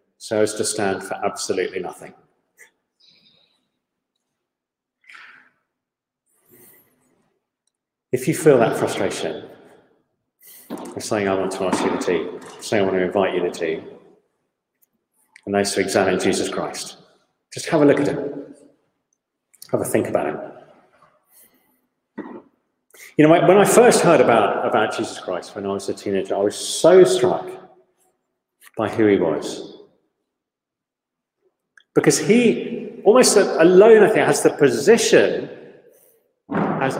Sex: male